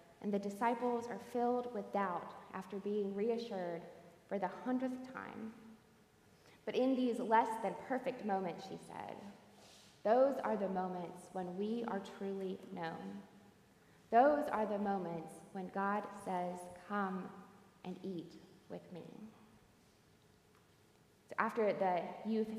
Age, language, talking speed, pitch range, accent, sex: 20-39, English, 125 wpm, 180-220 Hz, American, female